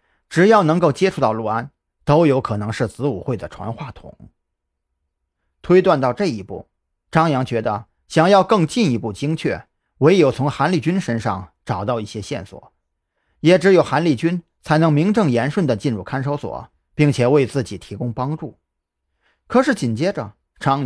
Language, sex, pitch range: Chinese, male, 105-160 Hz